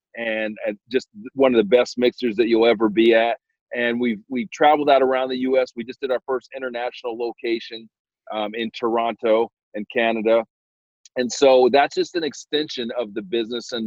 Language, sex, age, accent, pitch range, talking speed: English, male, 40-59, American, 115-140 Hz, 180 wpm